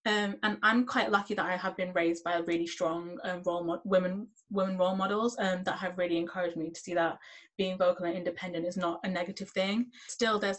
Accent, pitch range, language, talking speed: British, 180-205 Hz, English, 230 wpm